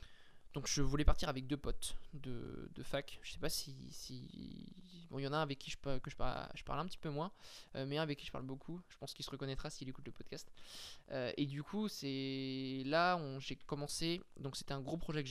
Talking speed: 255 wpm